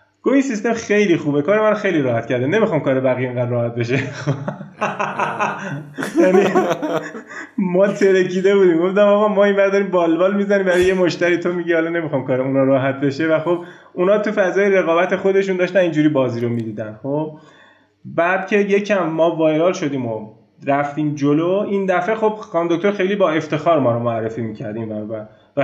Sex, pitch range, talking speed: male, 135-195 Hz, 170 wpm